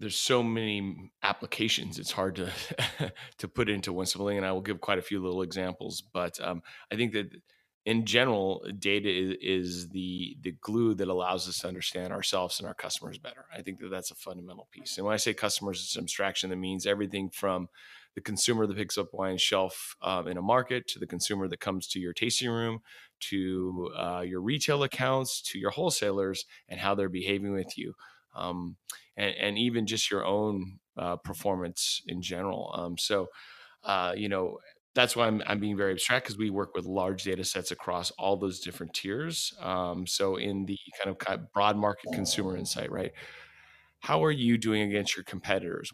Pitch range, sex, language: 95-110 Hz, male, English